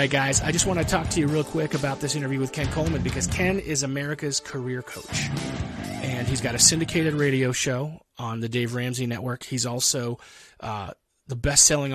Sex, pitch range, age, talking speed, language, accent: male, 120-150 Hz, 30-49, 205 wpm, English, American